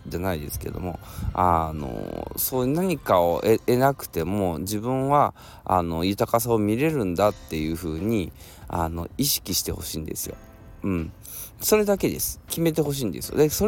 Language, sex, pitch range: Japanese, male, 90-130 Hz